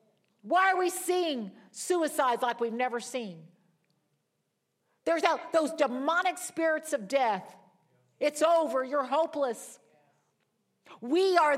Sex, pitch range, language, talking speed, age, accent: female, 165-245 Hz, English, 110 wpm, 50-69, American